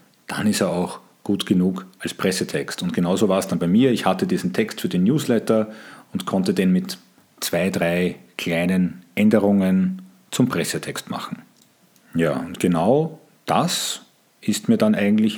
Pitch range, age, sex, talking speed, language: 95-150 Hz, 40-59, male, 160 wpm, German